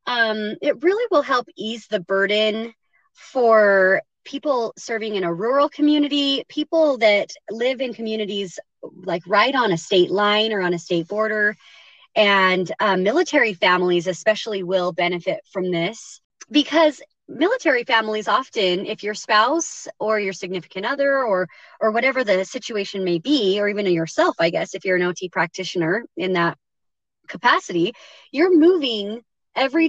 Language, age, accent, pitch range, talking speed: English, 20-39, American, 185-270 Hz, 150 wpm